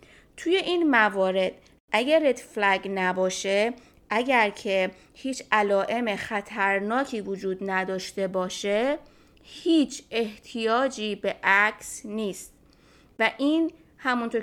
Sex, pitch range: female, 200-245 Hz